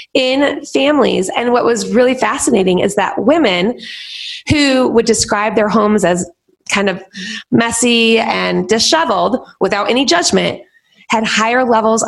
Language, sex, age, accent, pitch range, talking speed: English, female, 20-39, American, 215-285 Hz, 135 wpm